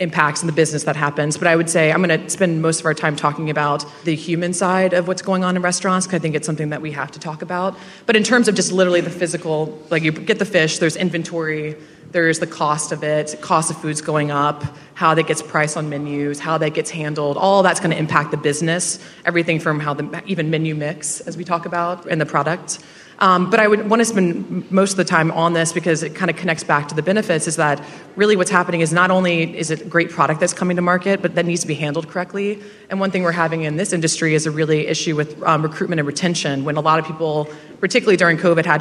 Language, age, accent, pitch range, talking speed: English, 20-39, American, 155-180 Hz, 260 wpm